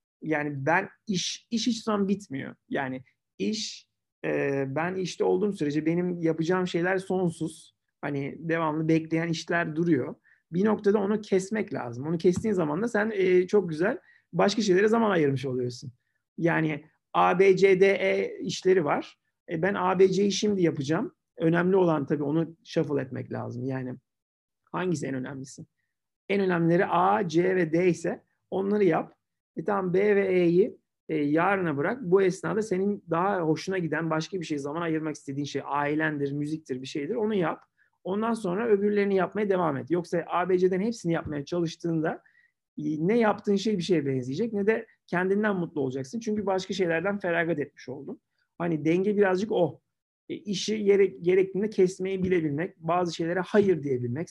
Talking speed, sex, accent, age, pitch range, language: 160 wpm, male, native, 40-59, 155-195 Hz, Turkish